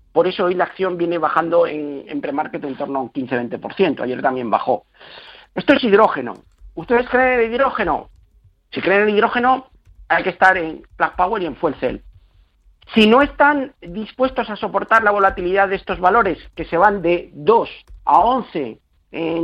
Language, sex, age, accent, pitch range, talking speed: Spanish, male, 50-69, Spanish, 145-210 Hz, 180 wpm